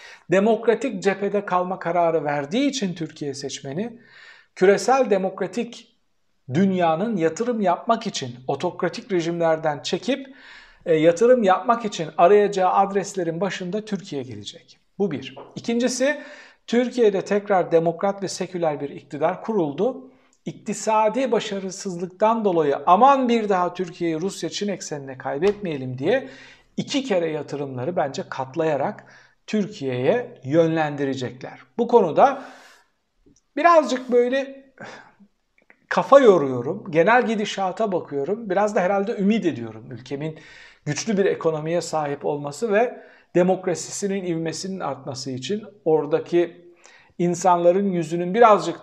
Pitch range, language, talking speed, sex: 155-215 Hz, Turkish, 105 wpm, male